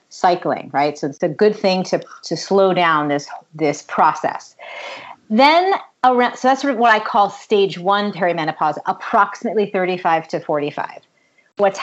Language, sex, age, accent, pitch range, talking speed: English, female, 30-49, American, 175-230 Hz, 155 wpm